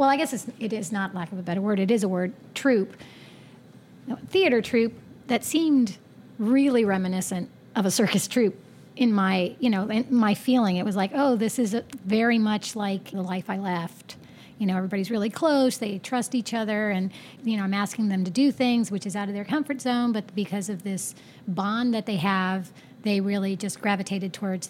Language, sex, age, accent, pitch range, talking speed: English, female, 40-59, American, 195-230 Hz, 200 wpm